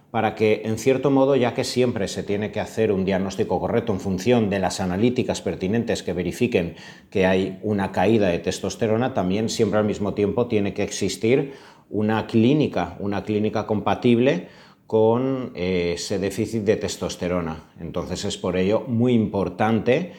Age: 40-59